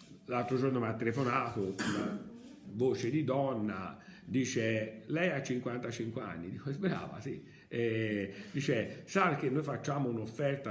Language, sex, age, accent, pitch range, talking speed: Italian, male, 50-69, native, 105-180 Hz, 135 wpm